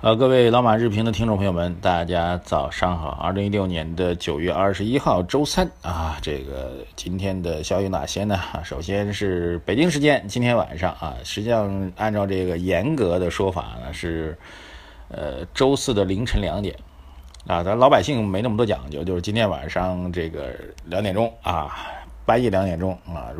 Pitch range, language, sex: 85-105 Hz, Chinese, male